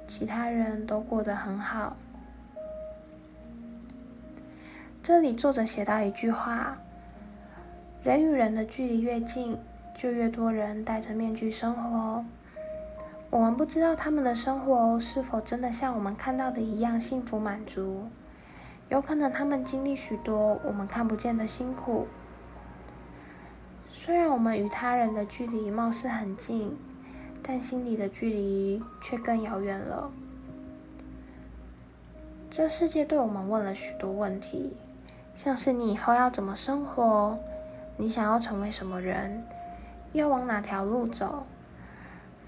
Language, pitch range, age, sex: Chinese, 205-255 Hz, 10-29, female